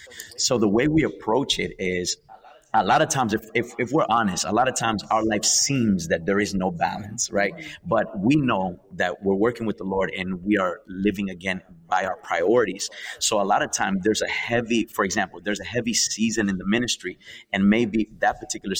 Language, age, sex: English, 30-49, male